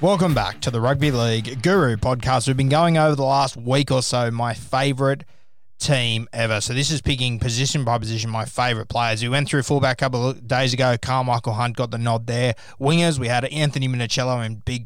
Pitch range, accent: 115-135 Hz, Australian